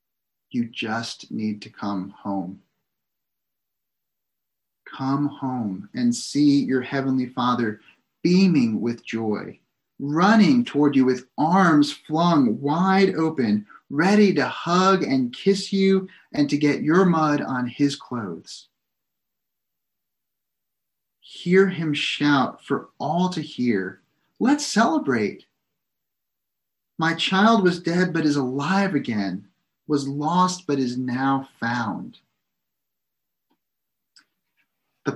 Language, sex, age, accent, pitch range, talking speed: English, male, 30-49, American, 125-165 Hz, 105 wpm